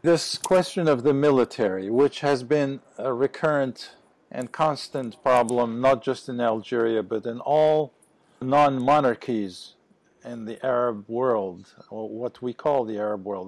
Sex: male